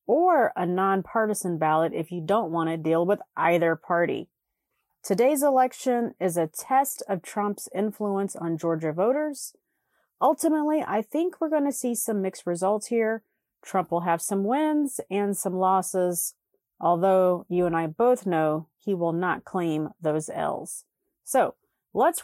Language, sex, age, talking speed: English, female, 30-49, 155 wpm